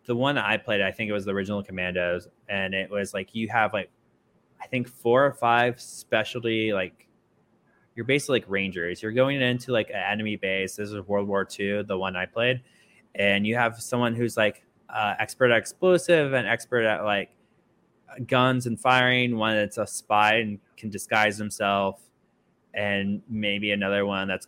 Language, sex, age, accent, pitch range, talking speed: English, male, 20-39, American, 100-120 Hz, 185 wpm